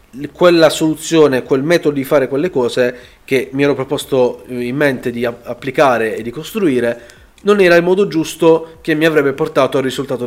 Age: 30-49